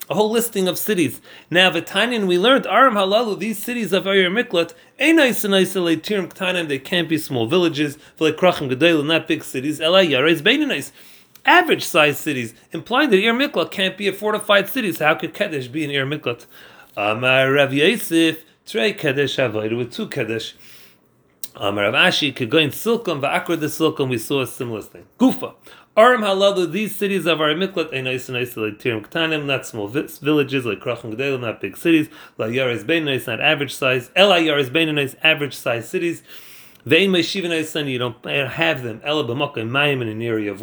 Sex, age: male, 40-59